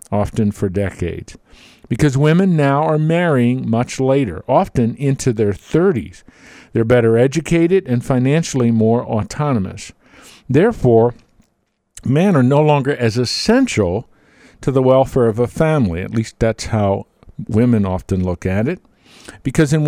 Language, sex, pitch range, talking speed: English, male, 110-145 Hz, 135 wpm